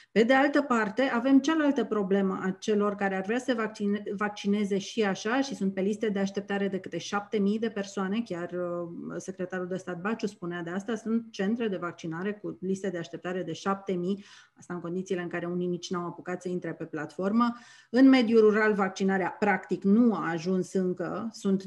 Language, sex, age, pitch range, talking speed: Romanian, female, 30-49, 185-225 Hz, 195 wpm